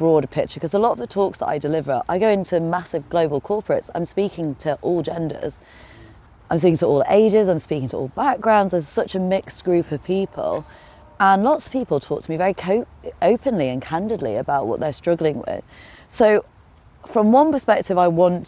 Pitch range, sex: 140-175 Hz, female